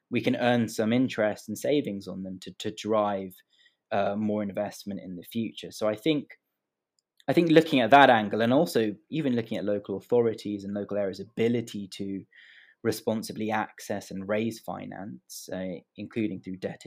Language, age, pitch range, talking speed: English, 20-39, 100-125 Hz, 170 wpm